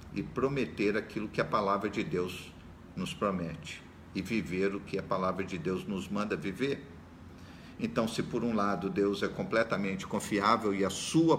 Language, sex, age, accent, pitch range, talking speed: Portuguese, male, 50-69, Brazilian, 85-115 Hz, 175 wpm